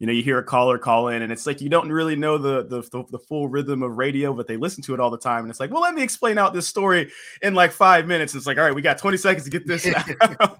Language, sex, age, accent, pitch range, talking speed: English, male, 20-39, American, 120-145 Hz, 325 wpm